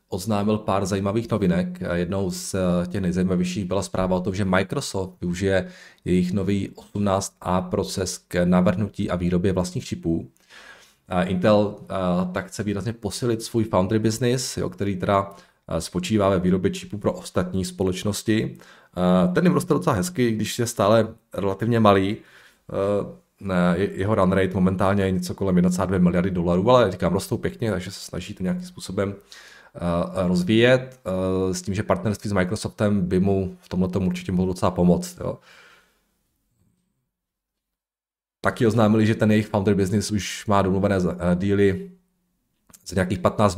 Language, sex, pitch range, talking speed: Czech, male, 90-105 Hz, 145 wpm